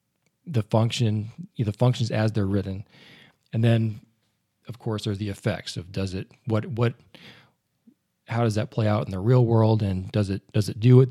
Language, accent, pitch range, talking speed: English, American, 105-125 Hz, 190 wpm